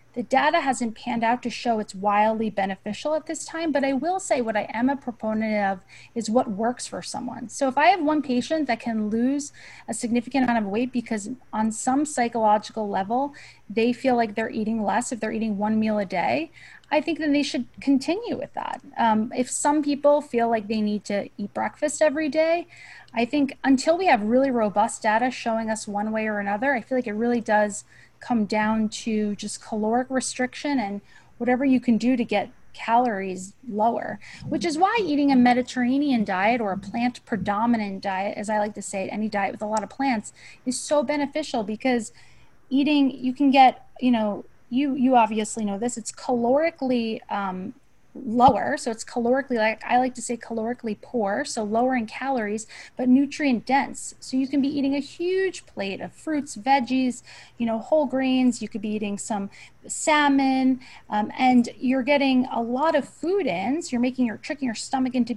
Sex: female